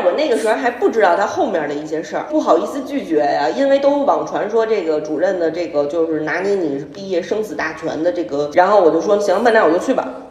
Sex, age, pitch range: female, 30-49, 170-275 Hz